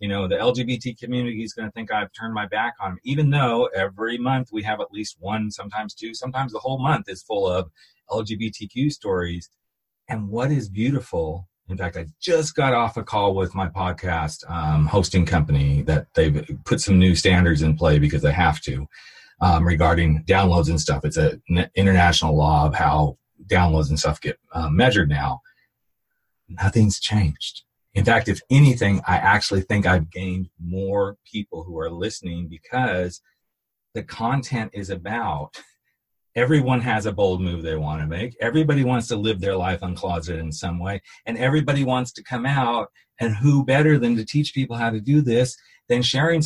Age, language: 40-59, English